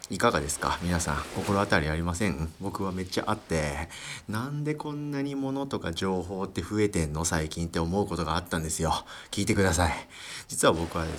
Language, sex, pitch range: Japanese, male, 80-105 Hz